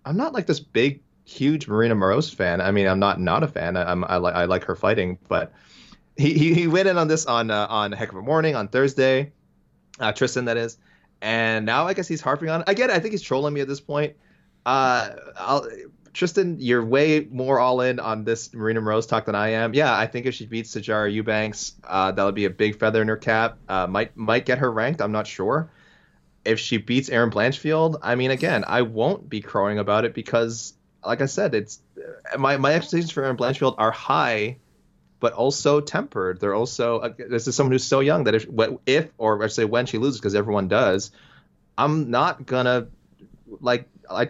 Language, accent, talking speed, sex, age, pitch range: English, American, 220 wpm, male, 20-39, 110-140 Hz